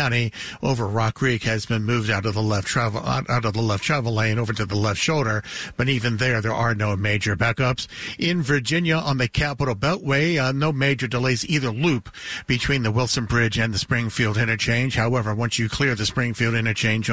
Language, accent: English, American